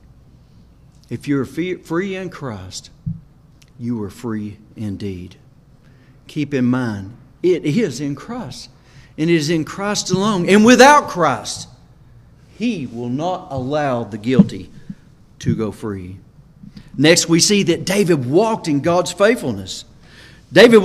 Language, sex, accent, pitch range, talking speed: English, male, American, 130-190 Hz, 130 wpm